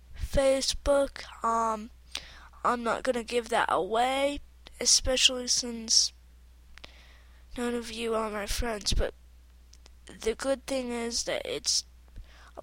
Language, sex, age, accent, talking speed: English, female, 20-39, American, 120 wpm